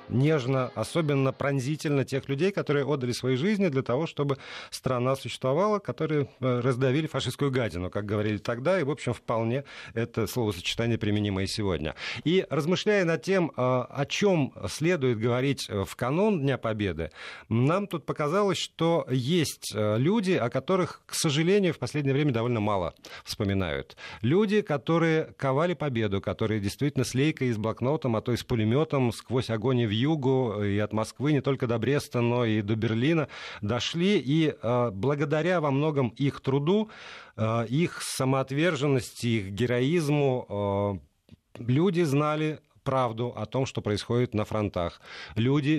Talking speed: 145 wpm